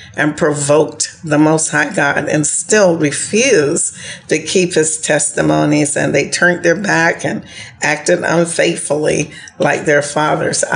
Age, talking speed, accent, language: 50-69, 135 wpm, American, English